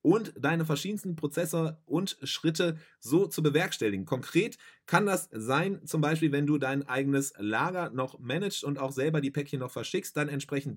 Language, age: English, 30-49